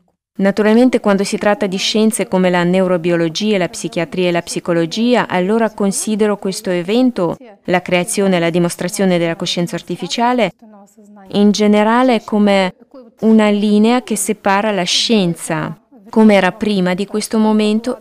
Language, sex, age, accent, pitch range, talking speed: Italian, female, 20-39, native, 180-215 Hz, 135 wpm